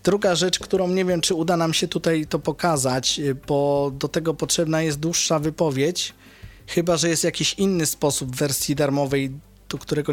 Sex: male